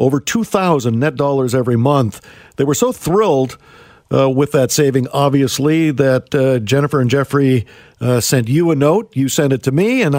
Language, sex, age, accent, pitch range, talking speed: English, male, 50-69, American, 125-150 Hz, 185 wpm